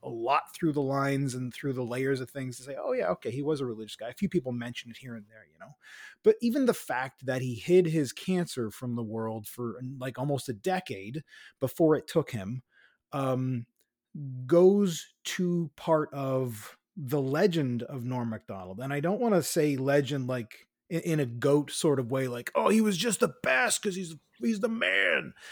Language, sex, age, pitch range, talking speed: English, male, 30-49, 130-180 Hz, 205 wpm